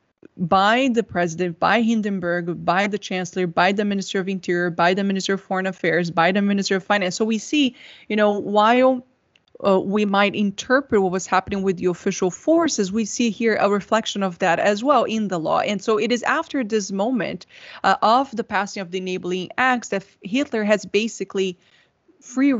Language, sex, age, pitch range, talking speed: English, female, 20-39, 185-230 Hz, 195 wpm